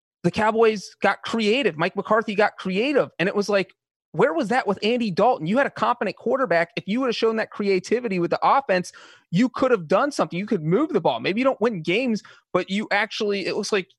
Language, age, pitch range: English, 30-49, 160-210 Hz